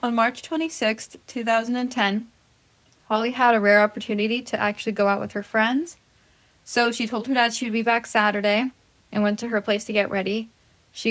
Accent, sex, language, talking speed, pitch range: American, female, English, 190 wpm, 205-230 Hz